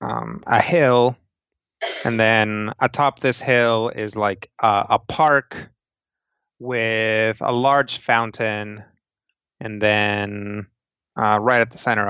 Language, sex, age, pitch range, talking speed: English, male, 30-49, 105-115 Hz, 120 wpm